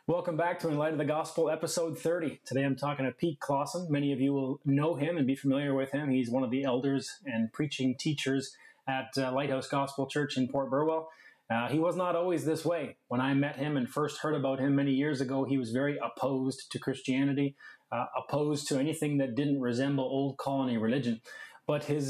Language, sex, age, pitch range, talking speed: English, male, 20-39, 130-150 Hz, 215 wpm